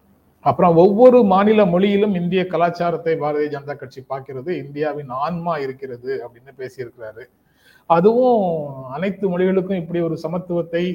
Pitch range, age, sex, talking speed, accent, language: 135-175 Hz, 30-49, male, 115 wpm, native, Tamil